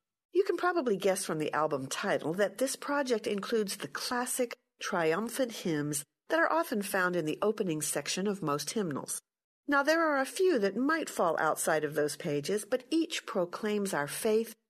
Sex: female